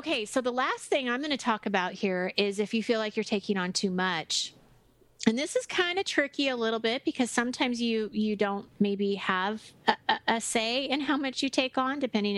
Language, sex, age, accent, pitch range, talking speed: English, female, 30-49, American, 185-215 Hz, 235 wpm